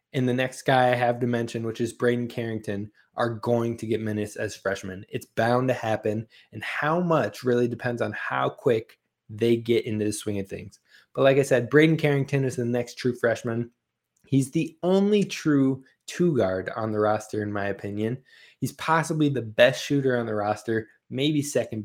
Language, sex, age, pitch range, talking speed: English, male, 20-39, 110-140 Hz, 190 wpm